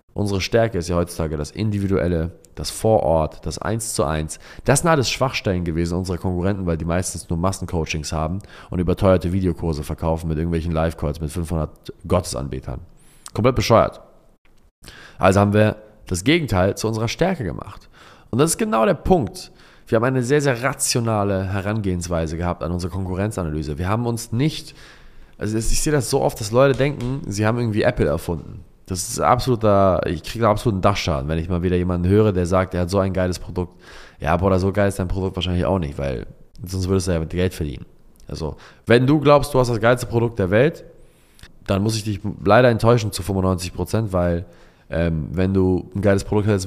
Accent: German